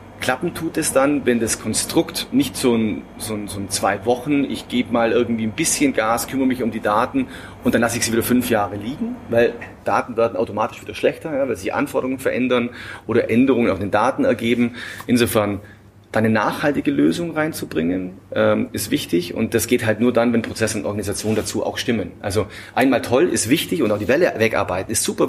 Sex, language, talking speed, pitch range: male, German, 210 wpm, 100-120 Hz